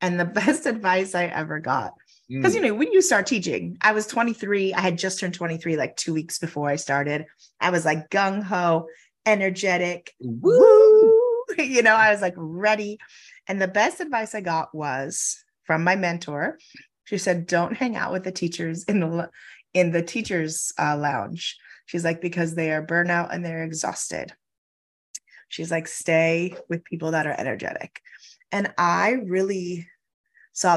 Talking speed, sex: 170 wpm, female